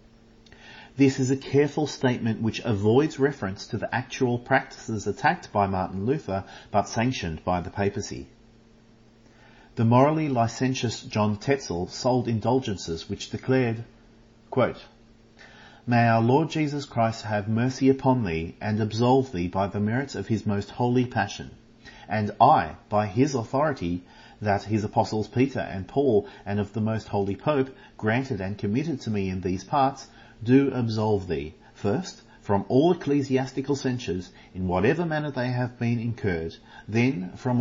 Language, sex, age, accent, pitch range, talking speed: English, male, 40-59, Australian, 105-130 Hz, 145 wpm